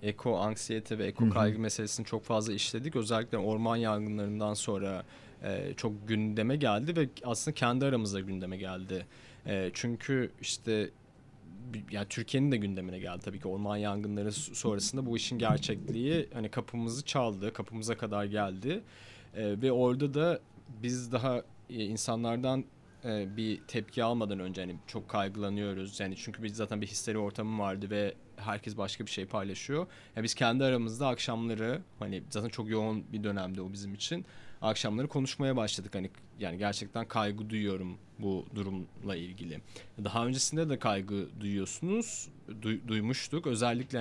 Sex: male